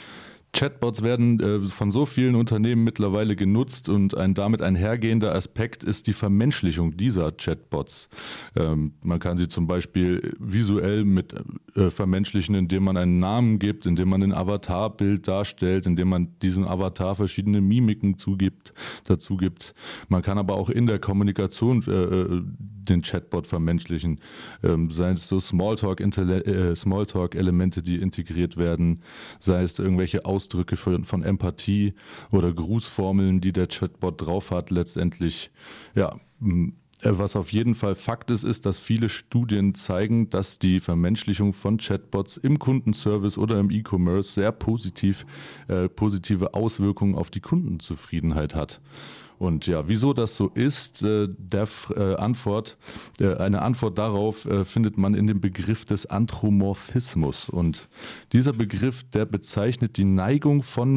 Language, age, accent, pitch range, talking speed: English, 30-49, German, 90-110 Hz, 145 wpm